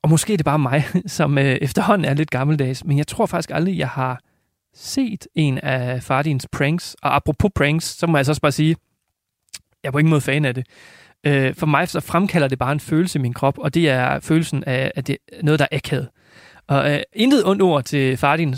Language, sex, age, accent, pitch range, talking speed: Danish, male, 30-49, native, 135-170 Hz, 225 wpm